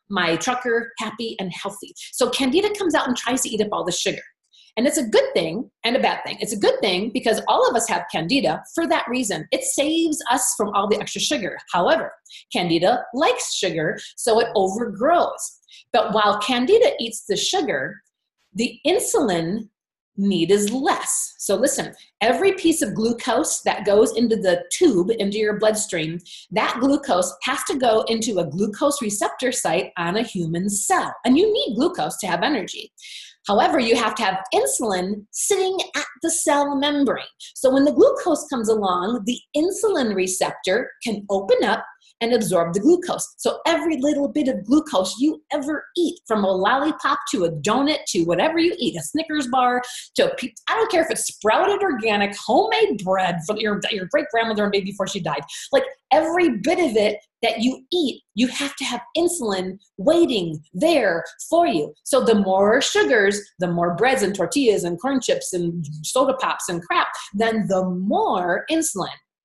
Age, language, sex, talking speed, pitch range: 40-59, English, female, 180 wpm, 200-310 Hz